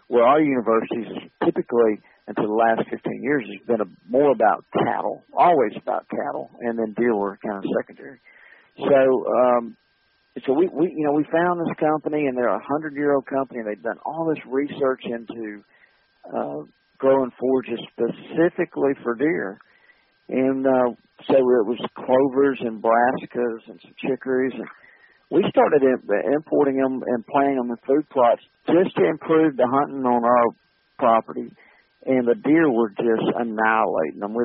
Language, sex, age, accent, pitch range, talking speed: English, male, 50-69, American, 115-145 Hz, 165 wpm